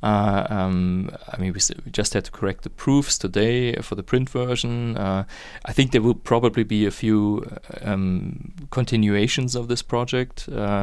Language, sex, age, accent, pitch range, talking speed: English, male, 30-49, German, 100-120 Hz, 185 wpm